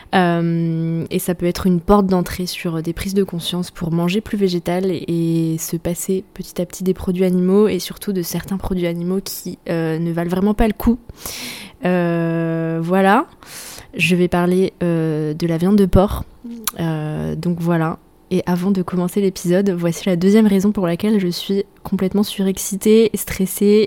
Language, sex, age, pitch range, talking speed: French, female, 20-39, 175-200 Hz, 180 wpm